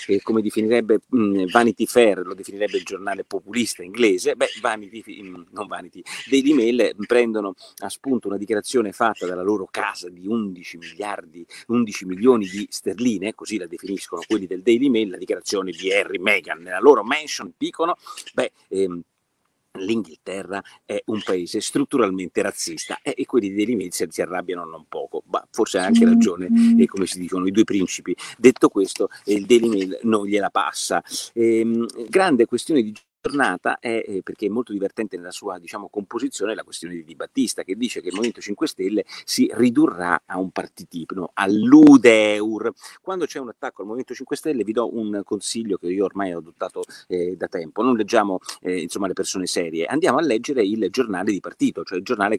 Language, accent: Italian, native